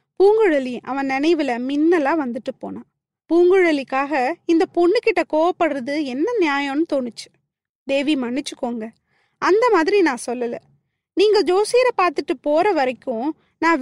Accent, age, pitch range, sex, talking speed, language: native, 20-39, 260-340 Hz, female, 115 wpm, Tamil